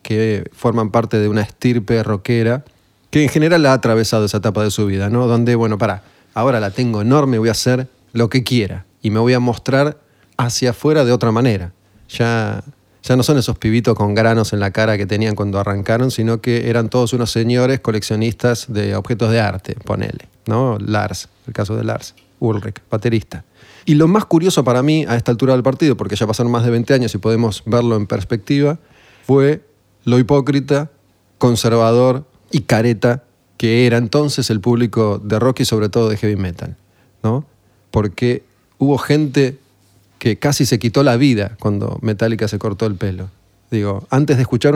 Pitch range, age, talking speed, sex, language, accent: 105-125 Hz, 20-39, 185 wpm, male, Spanish, Argentinian